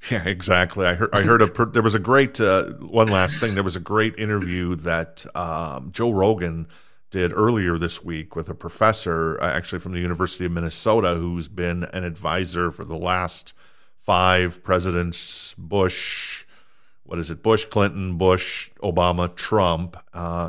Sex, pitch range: male, 90-105 Hz